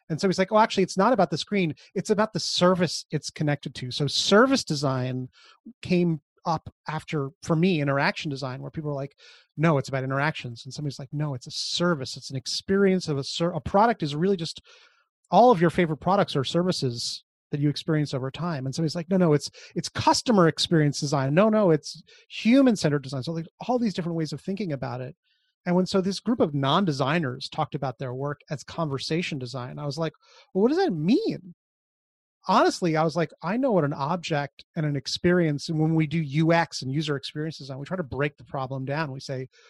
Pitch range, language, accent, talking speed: 140-180 Hz, English, American, 215 wpm